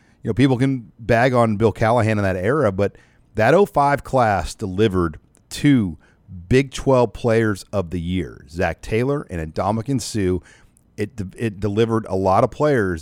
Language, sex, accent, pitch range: English, male, American, 90-115 Hz